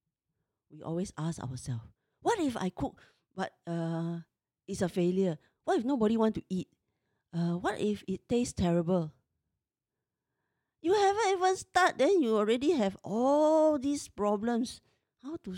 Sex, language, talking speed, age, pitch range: female, English, 145 wpm, 50-69, 165-240 Hz